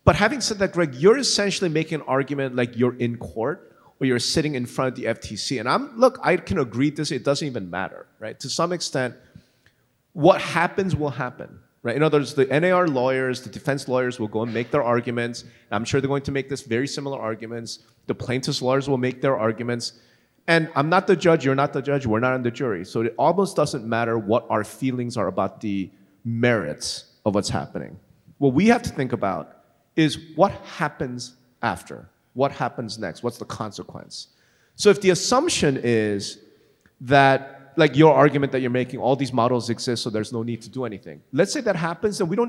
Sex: male